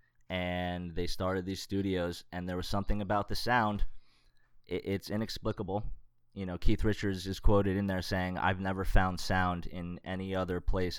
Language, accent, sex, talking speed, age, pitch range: English, American, male, 165 wpm, 20-39, 85-100 Hz